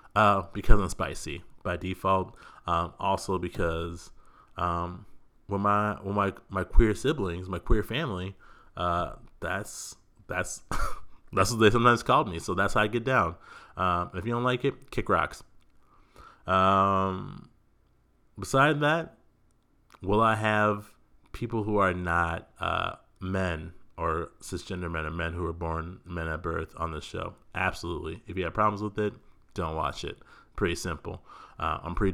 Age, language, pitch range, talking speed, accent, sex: 30-49, English, 85-110 Hz, 160 wpm, American, male